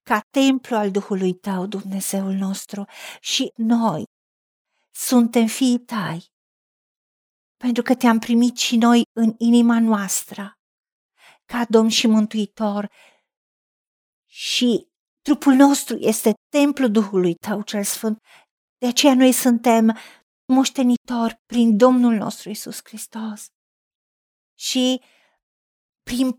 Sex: female